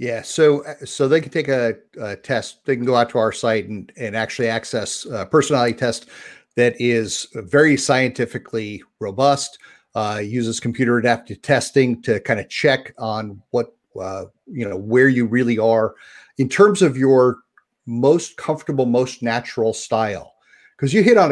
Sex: male